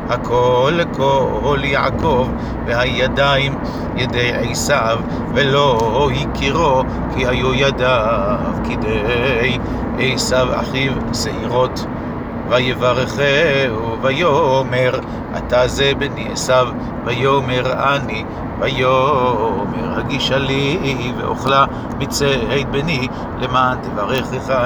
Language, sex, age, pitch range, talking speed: Hebrew, male, 60-79, 120-135 Hz, 75 wpm